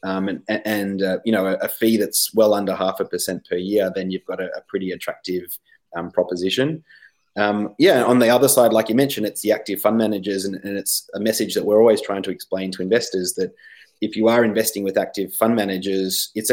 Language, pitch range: English, 95-110 Hz